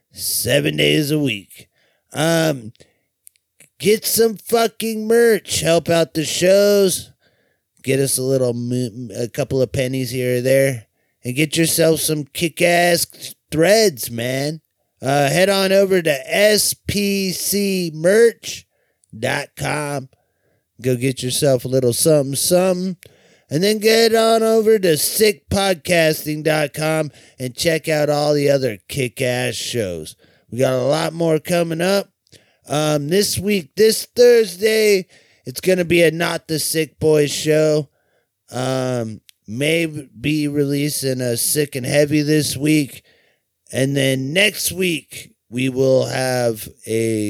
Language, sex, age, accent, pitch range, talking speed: English, male, 30-49, American, 130-180 Hz, 130 wpm